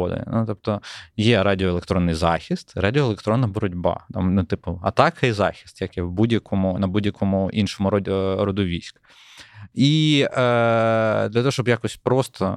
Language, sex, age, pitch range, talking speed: Ukrainian, male, 20-39, 95-120 Hz, 145 wpm